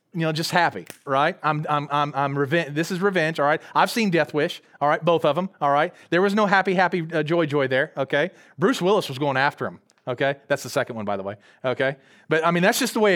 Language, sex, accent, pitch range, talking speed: English, male, American, 155-220 Hz, 265 wpm